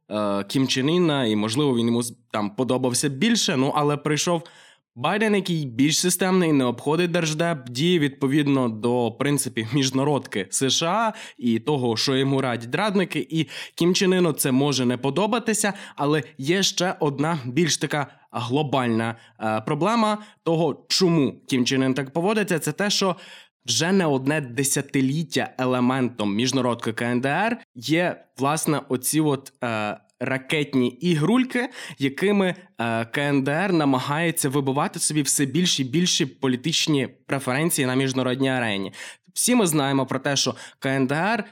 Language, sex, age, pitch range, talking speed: Ukrainian, male, 20-39, 125-165 Hz, 130 wpm